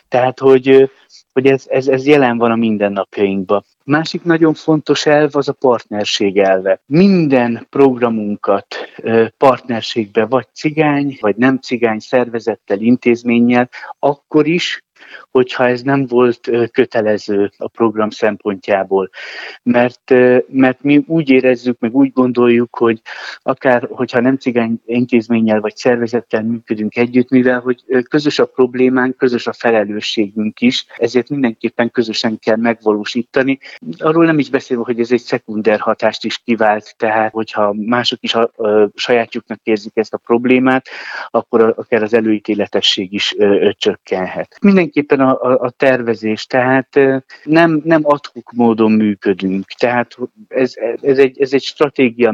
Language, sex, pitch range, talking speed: Hungarian, male, 110-135 Hz, 130 wpm